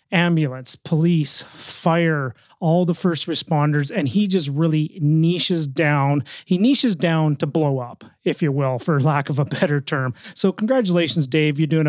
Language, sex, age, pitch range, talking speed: English, male, 30-49, 145-175 Hz, 165 wpm